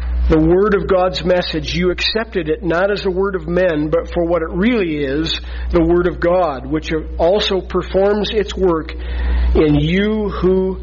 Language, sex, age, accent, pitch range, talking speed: English, male, 50-69, American, 135-205 Hz, 175 wpm